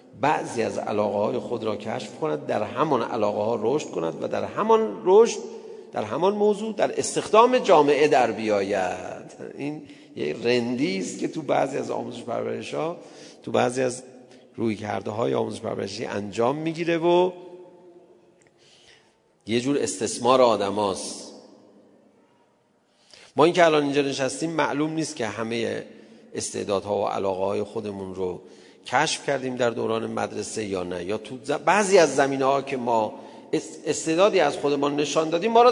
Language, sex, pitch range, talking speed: Persian, male, 110-170 Hz, 150 wpm